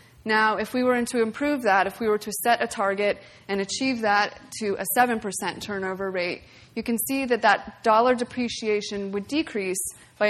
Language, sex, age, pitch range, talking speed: English, female, 20-39, 190-225 Hz, 185 wpm